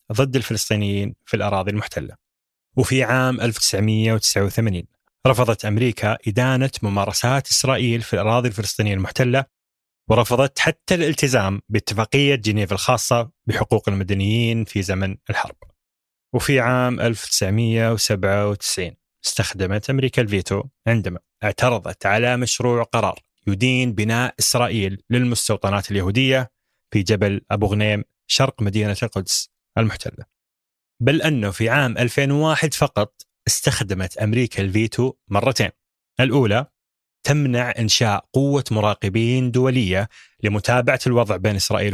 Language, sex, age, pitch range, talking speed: Arabic, male, 20-39, 105-130 Hz, 105 wpm